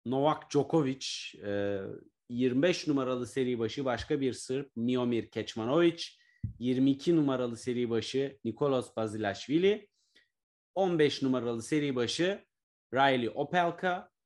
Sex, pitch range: male, 120-155 Hz